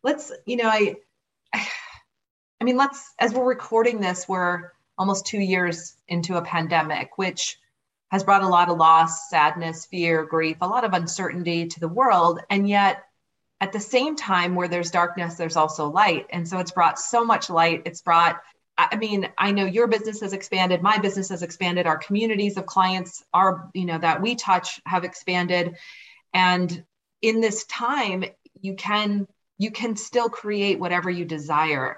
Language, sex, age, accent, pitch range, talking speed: English, female, 30-49, American, 170-220 Hz, 175 wpm